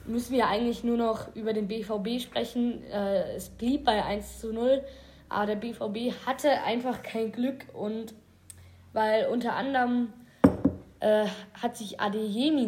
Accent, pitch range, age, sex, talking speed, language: German, 200-240 Hz, 20-39, female, 135 wpm, German